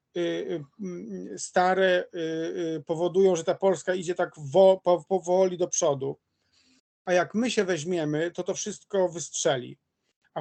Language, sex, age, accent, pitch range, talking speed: Polish, male, 40-59, native, 155-195 Hz, 115 wpm